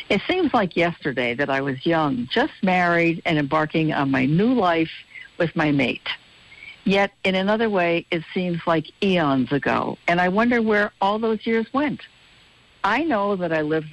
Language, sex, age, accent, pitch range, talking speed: English, female, 60-79, American, 155-215 Hz, 175 wpm